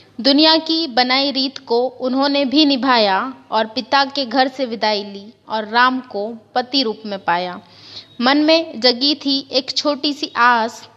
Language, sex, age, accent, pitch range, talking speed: Hindi, female, 20-39, native, 225-275 Hz, 165 wpm